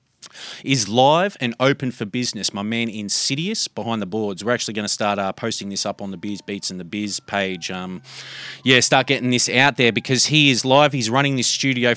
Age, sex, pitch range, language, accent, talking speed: 30-49, male, 110-140 Hz, English, Australian, 220 wpm